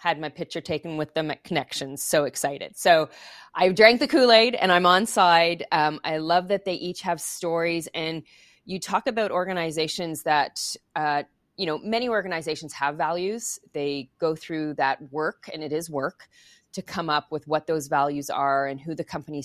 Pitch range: 145-175 Hz